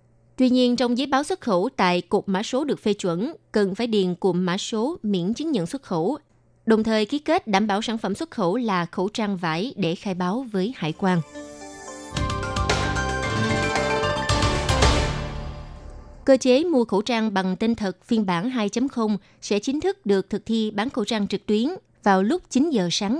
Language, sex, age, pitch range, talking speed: Vietnamese, female, 20-39, 180-235 Hz, 185 wpm